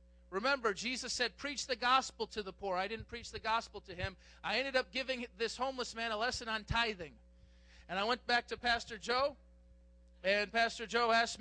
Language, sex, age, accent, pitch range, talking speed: English, male, 40-59, American, 180-235 Hz, 200 wpm